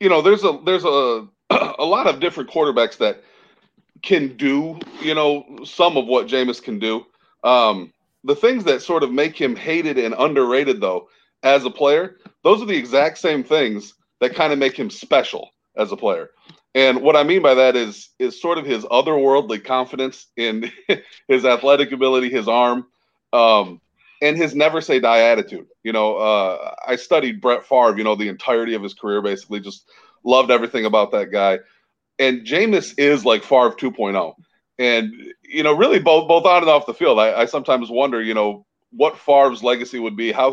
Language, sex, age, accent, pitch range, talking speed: English, male, 40-59, American, 120-165 Hz, 190 wpm